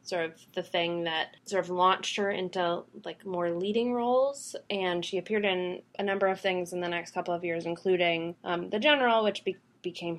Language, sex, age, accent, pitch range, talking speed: English, female, 20-39, American, 175-195 Hz, 200 wpm